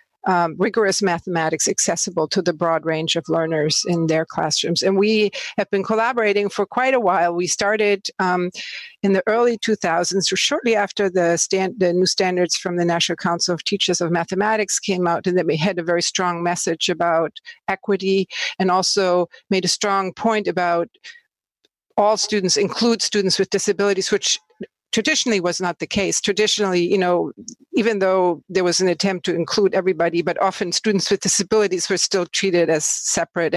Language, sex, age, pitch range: English, female, 50-69, 175-205 Hz